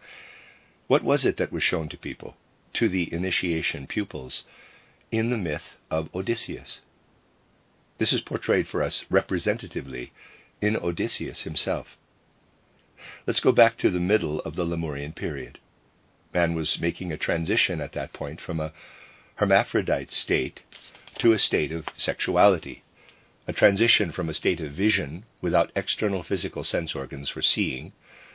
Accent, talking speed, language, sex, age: American, 140 wpm, English, male, 50-69